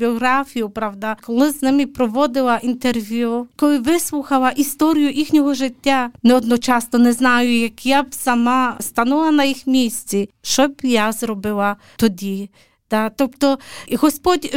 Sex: female